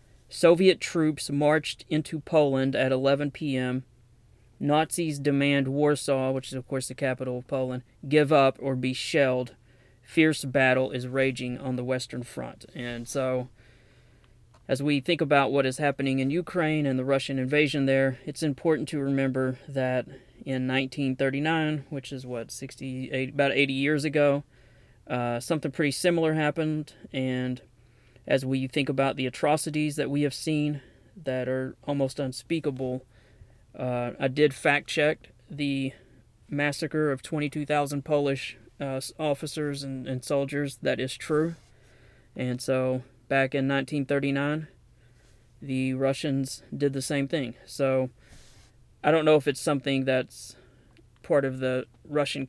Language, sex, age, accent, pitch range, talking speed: English, male, 30-49, American, 125-145 Hz, 140 wpm